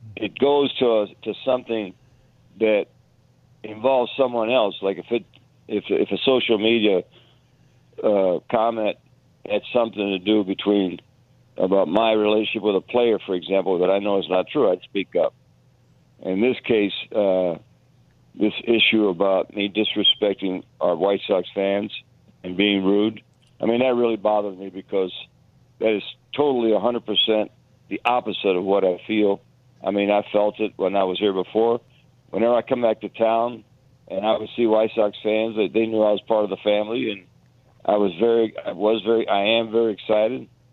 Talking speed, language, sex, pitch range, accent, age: 175 wpm, English, male, 105-120 Hz, American, 60-79